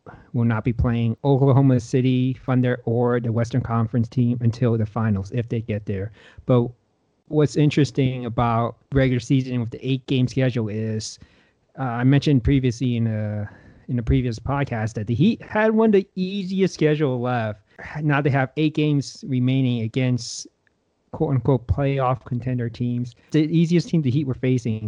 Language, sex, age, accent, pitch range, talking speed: English, male, 40-59, American, 115-140 Hz, 165 wpm